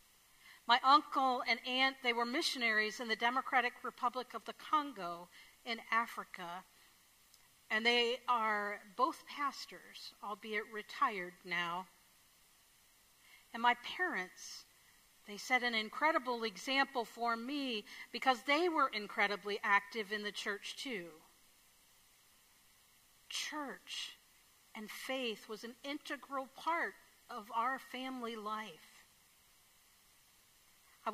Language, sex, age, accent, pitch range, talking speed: English, female, 50-69, American, 205-260 Hz, 105 wpm